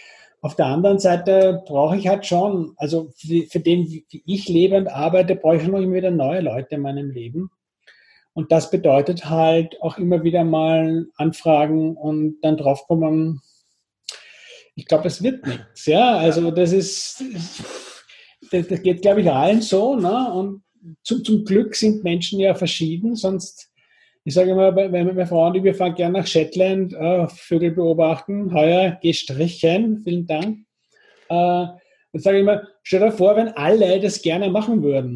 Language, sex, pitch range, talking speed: German, male, 165-200 Hz, 165 wpm